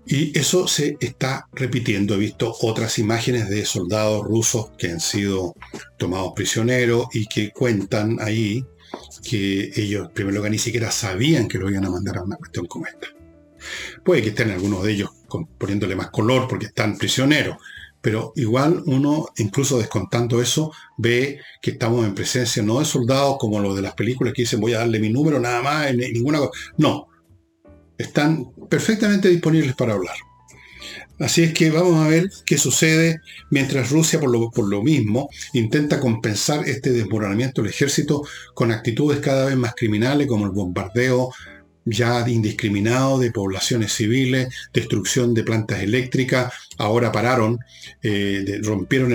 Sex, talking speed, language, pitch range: male, 155 wpm, Spanish, 105-130 Hz